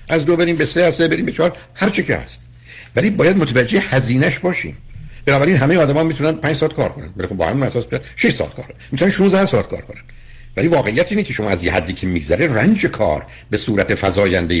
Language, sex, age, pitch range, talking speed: Persian, male, 60-79, 95-155 Hz, 225 wpm